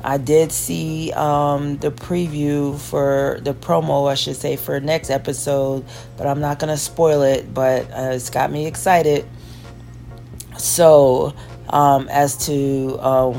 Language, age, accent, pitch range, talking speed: English, 40-59, American, 130-155 Hz, 145 wpm